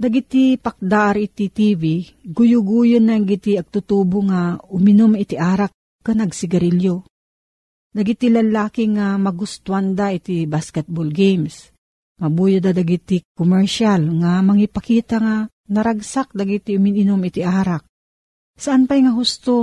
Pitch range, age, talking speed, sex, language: 170-215 Hz, 50-69, 110 wpm, female, Filipino